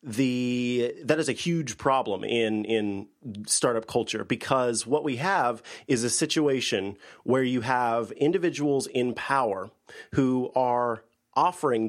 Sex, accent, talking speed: male, American, 130 wpm